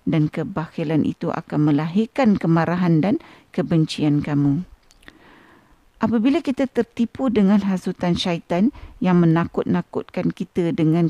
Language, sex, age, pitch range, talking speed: Malay, female, 50-69, 160-220 Hz, 105 wpm